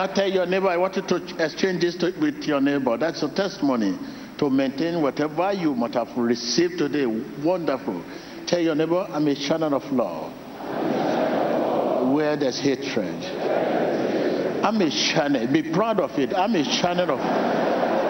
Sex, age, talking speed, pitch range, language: male, 60-79, 160 wpm, 175-240 Hz, English